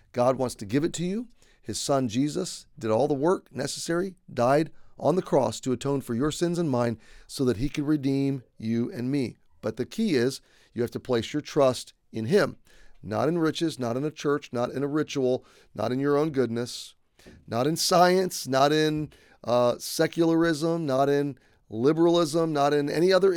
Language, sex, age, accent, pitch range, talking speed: English, male, 40-59, American, 115-150 Hz, 195 wpm